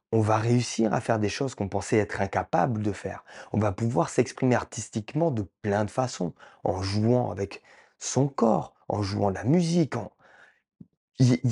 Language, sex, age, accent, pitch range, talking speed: French, male, 20-39, French, 110-145 Hz, 175 wpm